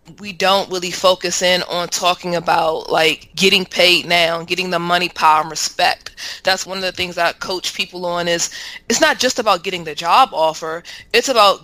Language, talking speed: English, 200 wpm